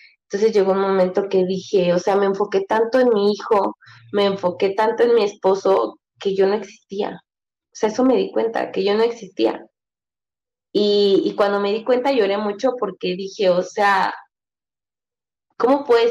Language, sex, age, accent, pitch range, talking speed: Spanish, female, 20-39, Mexican, 185-230 Hz, 180 wpm